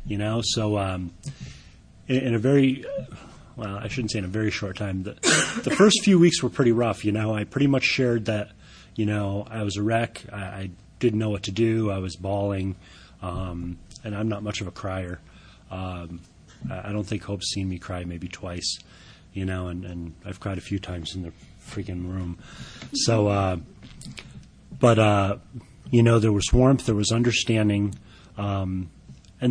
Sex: male